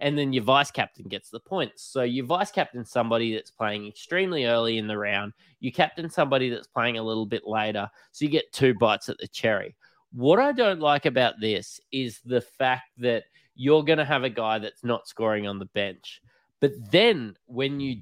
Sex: male